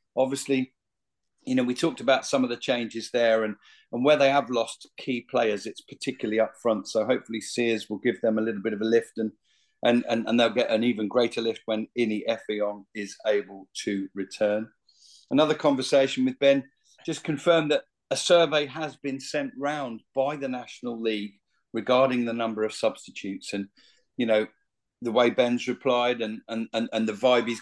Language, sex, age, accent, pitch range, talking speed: English, male, 40-59, British, 110-130 Hz, 190 wpm